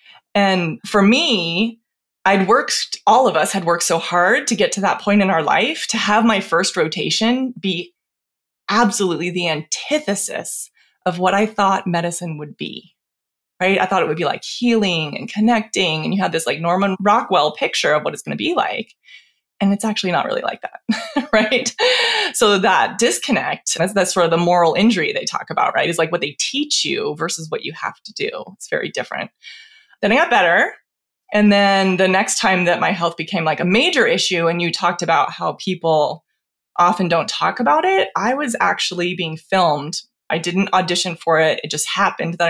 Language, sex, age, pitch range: English, female, 20-39, 170-230 Hz